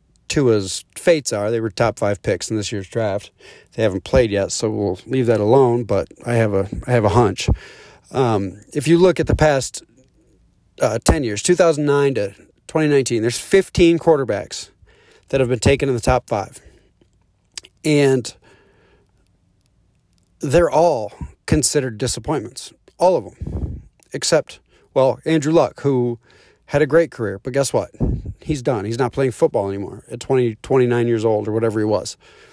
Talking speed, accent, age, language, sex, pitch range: 165 wpm, American, 40-59, English, male, 115-145 Hz